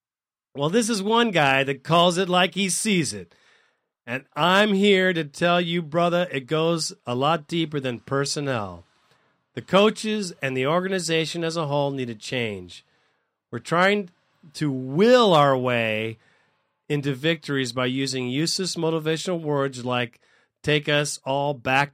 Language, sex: English, male